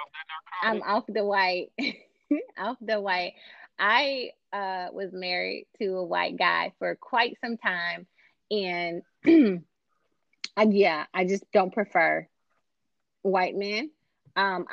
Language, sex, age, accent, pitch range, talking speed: English, female, 20-39, American, 170-215 Hz, 115 wpm